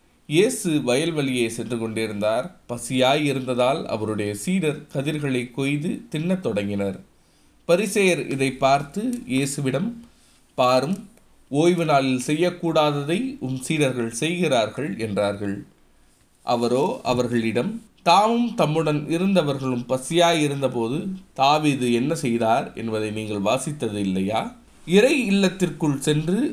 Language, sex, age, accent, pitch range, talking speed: Tamil, male, 20-39, native, 110-160 Hz, 85 wpm